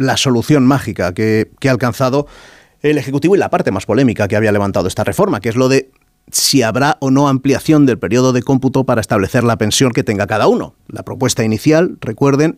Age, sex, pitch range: 30-49, male, 115-140 Hz